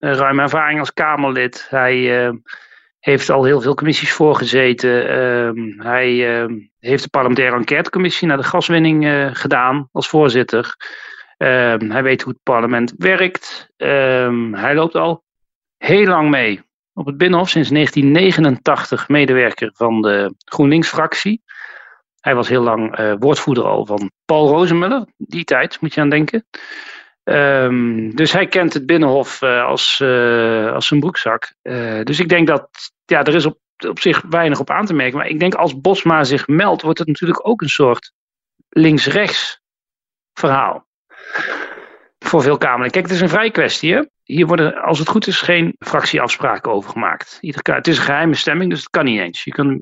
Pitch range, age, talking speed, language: 125-170 Hz, 40-59, 170 wpm, Dutch